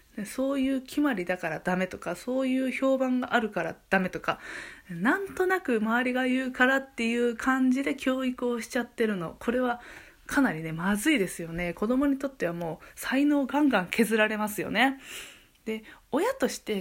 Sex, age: female, 20-39